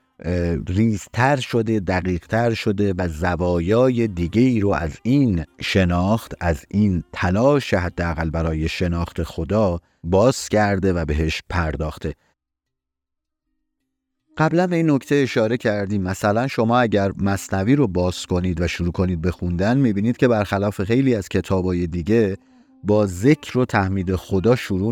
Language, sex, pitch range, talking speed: Persian, male, 85-115 Hz, 135 wpm